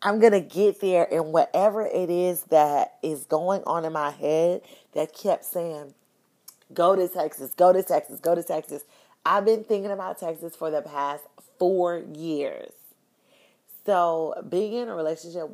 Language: English